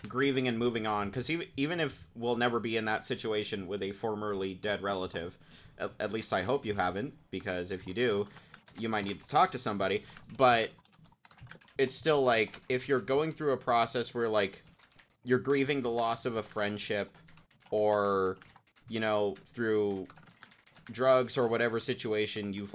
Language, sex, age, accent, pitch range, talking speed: English, male, 30-49, American, 100-125 Hz, 170 wpm